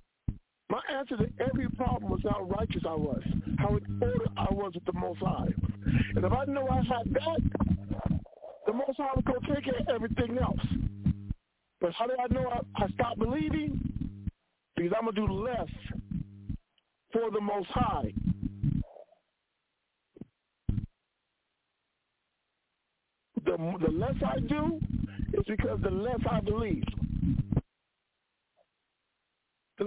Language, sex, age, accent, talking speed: English, male, 50-69, American, 135 wpm